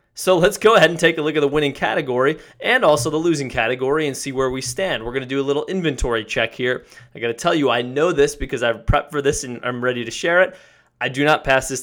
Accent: American